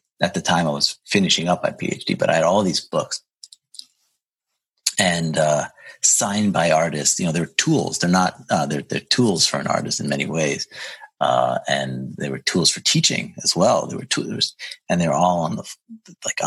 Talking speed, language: 195 wpm, English